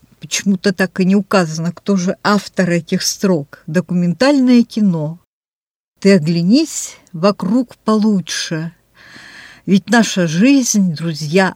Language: Russian